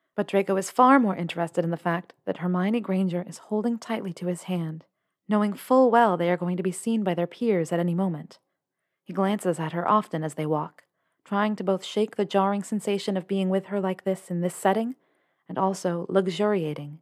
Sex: female